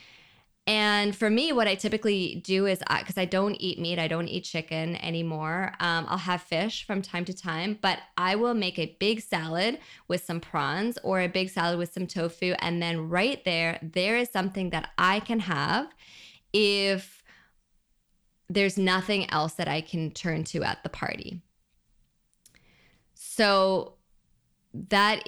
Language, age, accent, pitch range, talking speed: English, 20-39, American, 170-210 Hz, 160 wpm